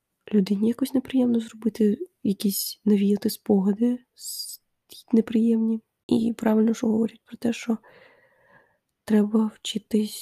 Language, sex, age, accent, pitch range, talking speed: Ukrainian, female, 20-39, native, 215-250 Hz, 100 wpm